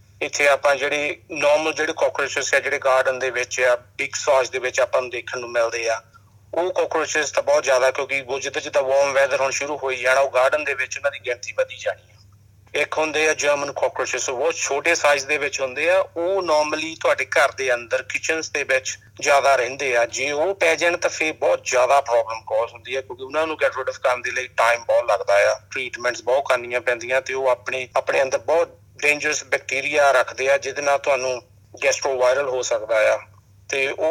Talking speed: 195 wpm